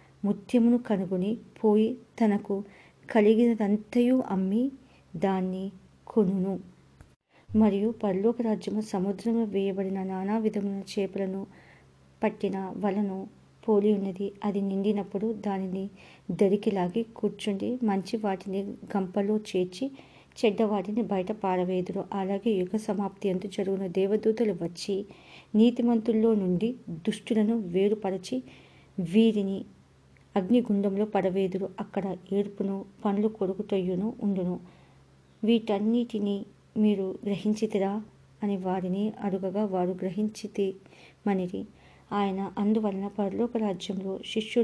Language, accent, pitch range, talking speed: English, Indian, 195-215 Hz, 95 wpm